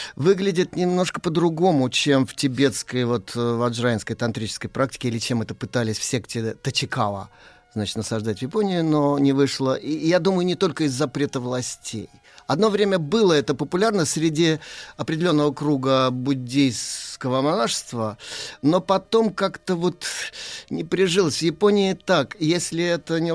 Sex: male